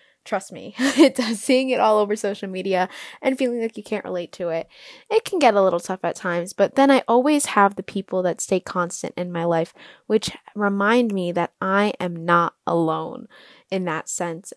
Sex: female